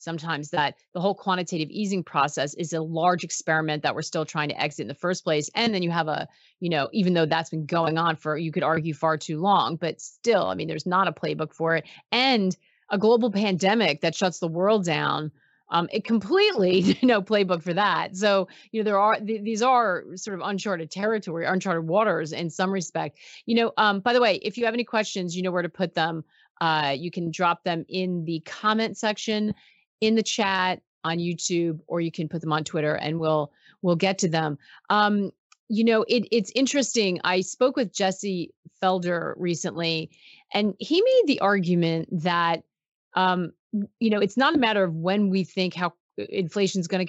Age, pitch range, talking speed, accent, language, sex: 30-49, 165-210 Hz, 205 wpm, American, English, female